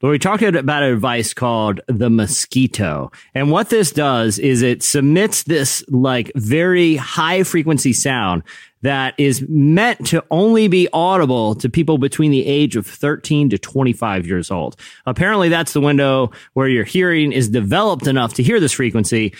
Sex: male